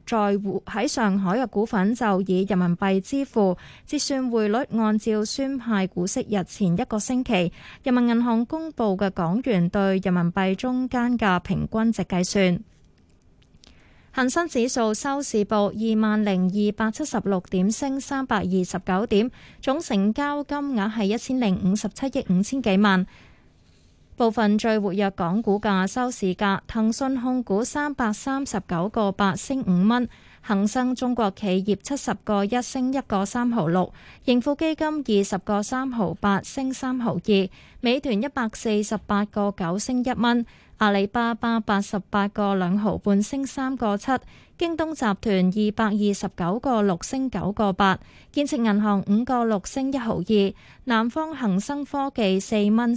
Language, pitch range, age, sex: Chinese, 195-250 Hz, 20-39, female